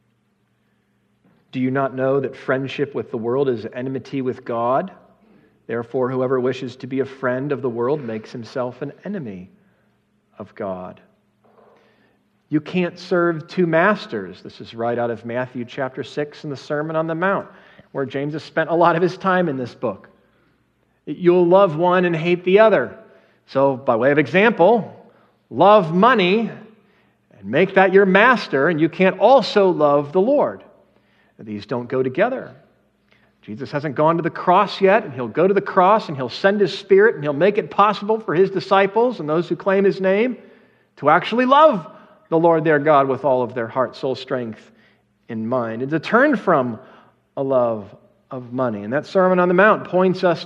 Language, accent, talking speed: English, American, 185 wpm